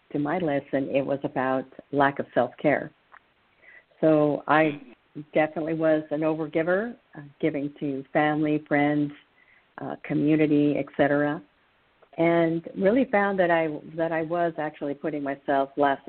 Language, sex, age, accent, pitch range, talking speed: English, female, 50-69, American, 145-165 Hz, 130 wpm